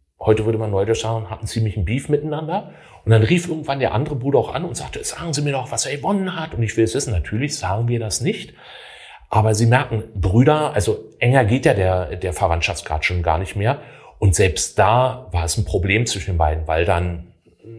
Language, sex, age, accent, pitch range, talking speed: German, male, 30-49, German, 95-120 Hz, 225 wpm